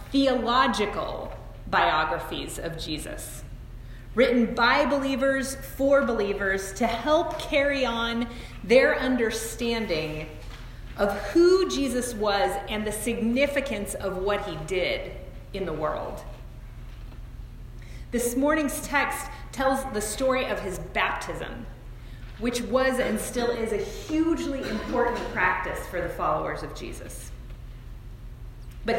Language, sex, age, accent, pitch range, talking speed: English, female, 30-49, American, 155-250 Hz, 110 wpm